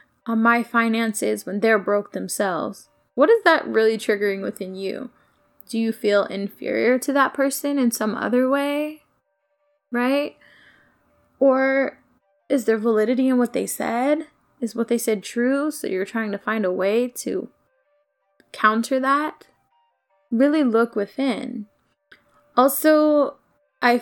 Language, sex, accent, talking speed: English, female, American, 135 wpm